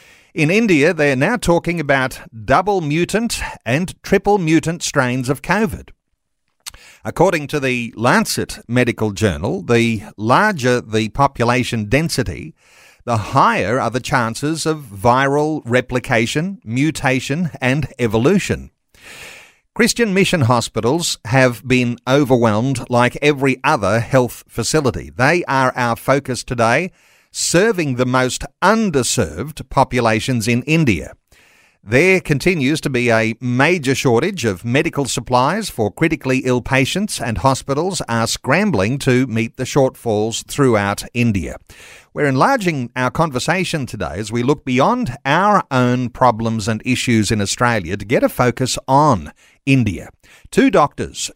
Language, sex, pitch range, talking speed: English, male, 115-150 Hz, 125 wpm